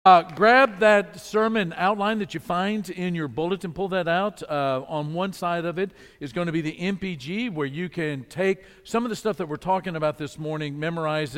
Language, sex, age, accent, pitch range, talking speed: English, male, 50-69, American, 140-175 Hz, 215 wpm